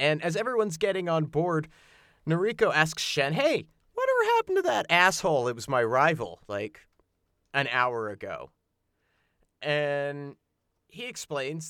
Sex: male